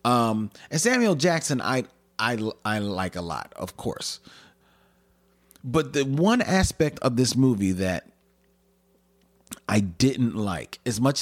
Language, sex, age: English, male, 40-59